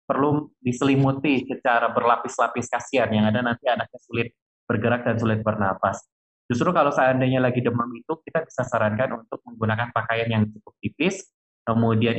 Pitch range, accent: 110-125 Hz, native